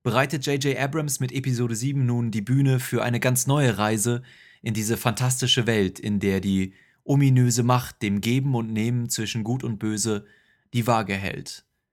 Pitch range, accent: 110-130 Hz, German